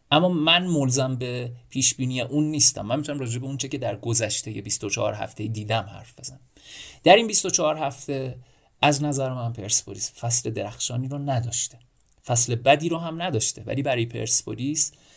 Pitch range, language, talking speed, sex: 110-135 Hz, Persian, 160 wpm, male